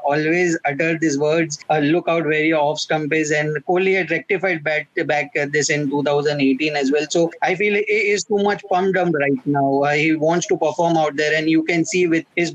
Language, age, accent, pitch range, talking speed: English, 20-39, Indian, 150-170 Hz, 225 wpm